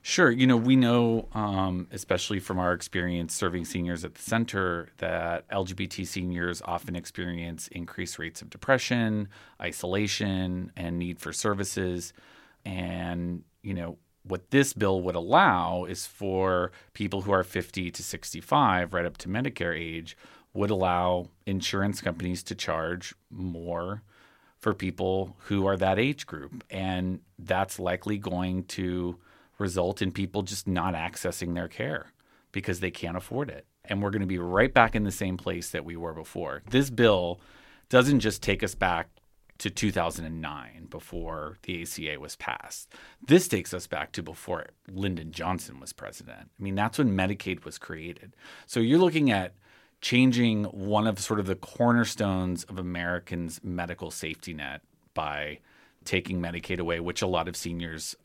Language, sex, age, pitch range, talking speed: English, male, 30-49, 85-100 Hz, 160 wpm